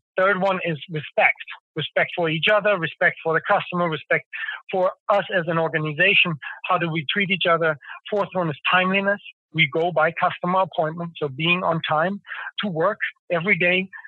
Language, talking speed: English, 175 wpm